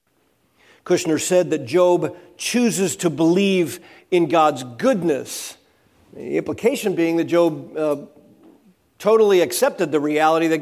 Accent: American